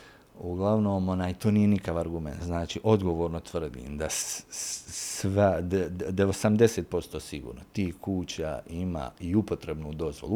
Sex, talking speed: male, 115 wpm